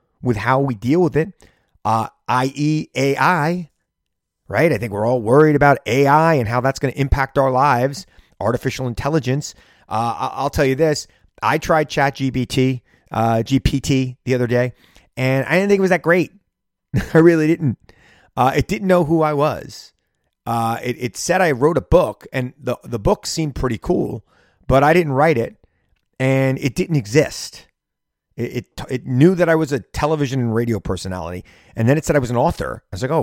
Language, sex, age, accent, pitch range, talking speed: English, male, 30-49, American, 115-150 Hz, 195 wpm